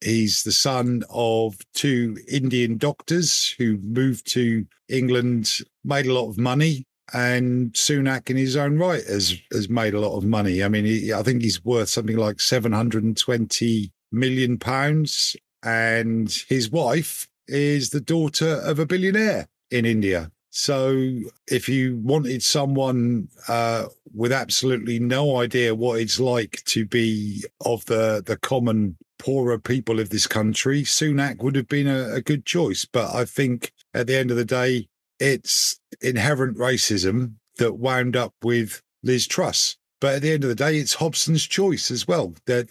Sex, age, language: male, 50-69, English